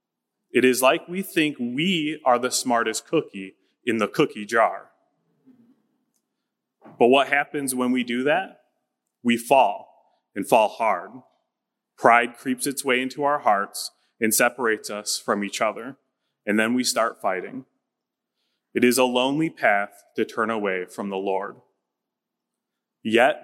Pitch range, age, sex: 115-155 Hz, 30-49, male